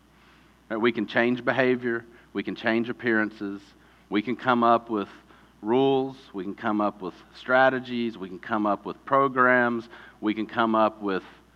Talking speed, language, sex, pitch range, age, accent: 160 wpm, English, male, 110-155 Hz, 40-59, American